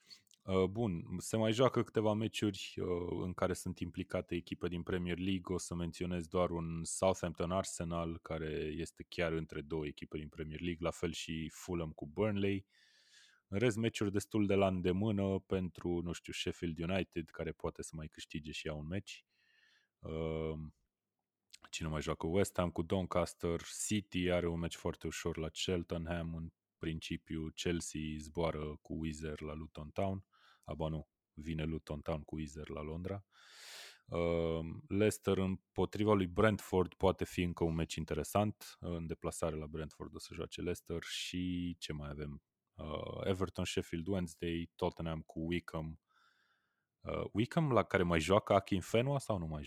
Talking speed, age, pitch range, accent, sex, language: 160 wpm, 20-39, 80-95 Hz, native, male, Romanian